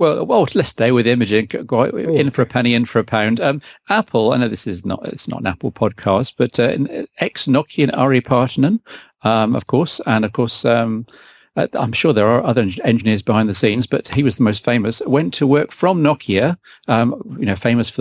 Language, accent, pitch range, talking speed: English, British, 110-135 Hz, 210 wpm